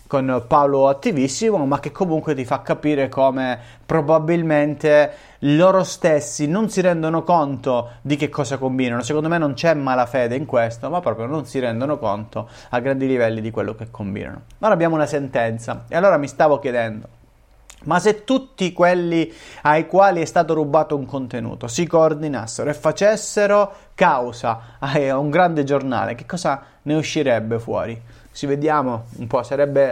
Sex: male